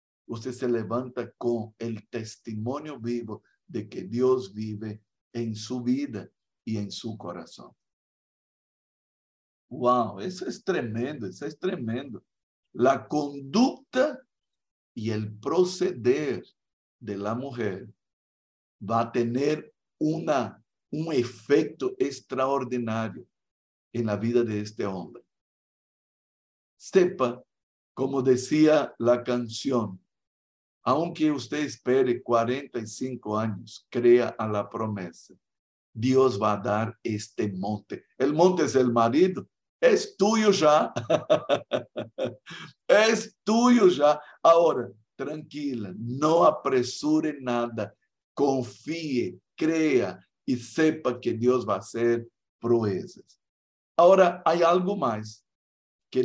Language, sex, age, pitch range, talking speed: Spanish, male, 60-79, 110-145 Hz, 100 wpm